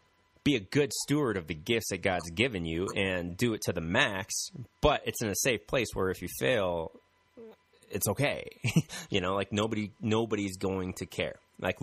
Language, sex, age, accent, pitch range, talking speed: English, male, 30-49, American, 90-115 Hz, 195 wpm